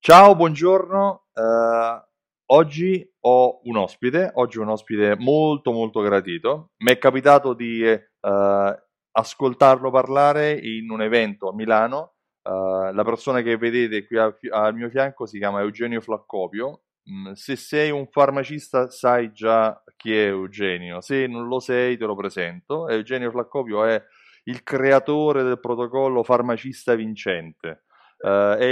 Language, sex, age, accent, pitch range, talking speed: Italian, male, 30-49, native, 110-135 Hz, 140 wpm